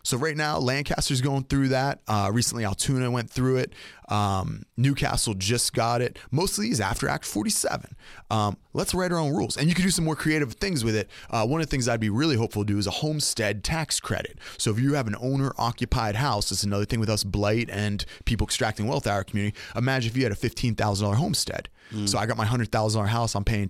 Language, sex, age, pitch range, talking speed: English, male, 30-49, 105-135 Hz, 235 wpm